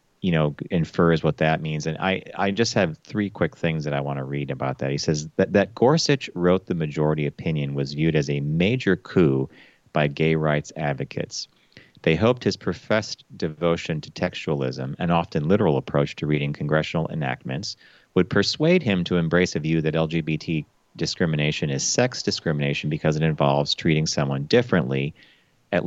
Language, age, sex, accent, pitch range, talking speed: English, 40-59, male, American, 75-95 Hz, 175 wpm